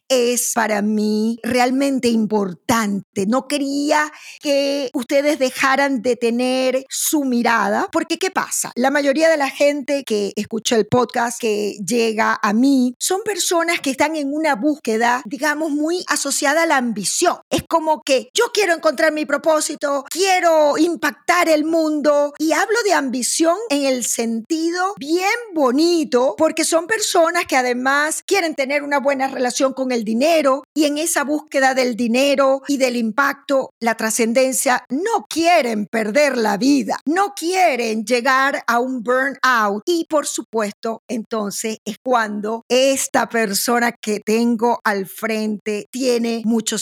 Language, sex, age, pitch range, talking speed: Spanish, female, 40-59, 230-300 Hz, 145 wpm